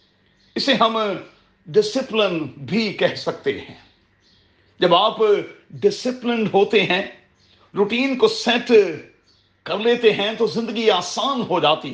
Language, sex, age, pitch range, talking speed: Urdu, male, 40-59, 170-240 Hz, 115 wpm